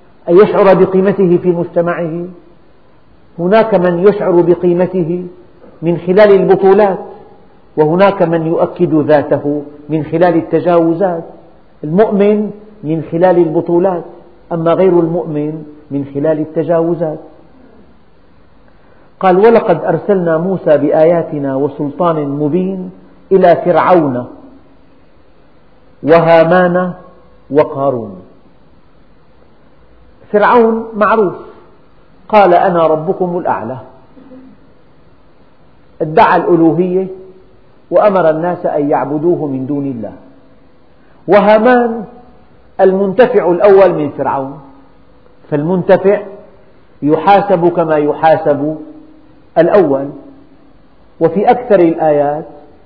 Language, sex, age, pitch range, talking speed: Arabic, male, 50-69, 155-190 Hz, 75 wpm